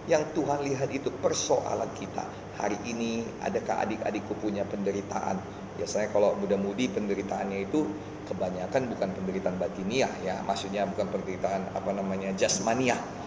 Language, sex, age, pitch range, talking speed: Indonesian, male, 30-49, 100-120 Hz, 125 wpm